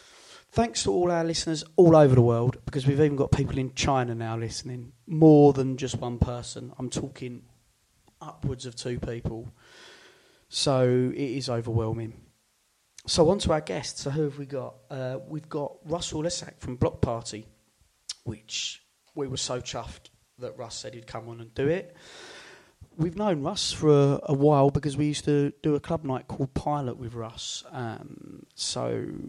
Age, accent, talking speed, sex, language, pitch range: 30-49, British, 175 wpm, male, English, 115-140 Hz